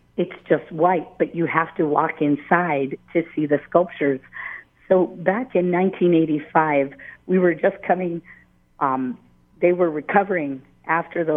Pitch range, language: 150-180 Hz, English